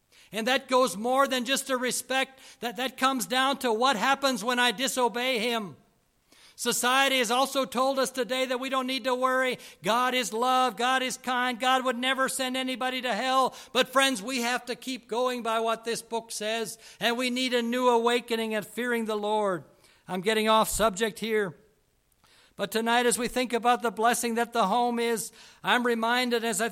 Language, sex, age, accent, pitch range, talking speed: English, male, 60-79, American, 225-255 Hz, 195 wpm